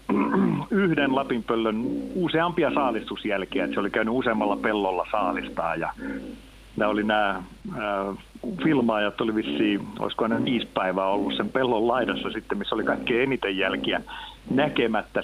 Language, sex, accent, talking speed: Finnish, male, native, 125 wpm